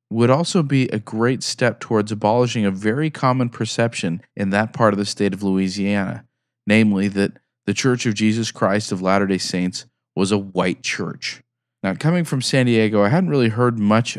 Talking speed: 185 wpm